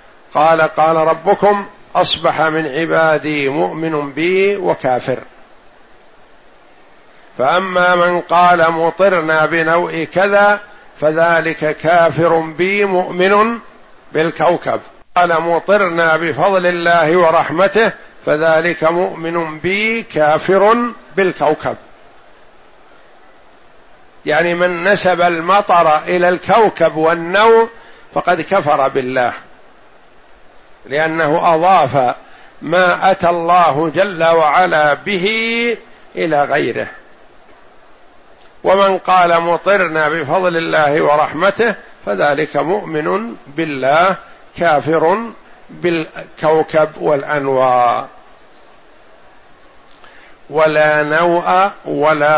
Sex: male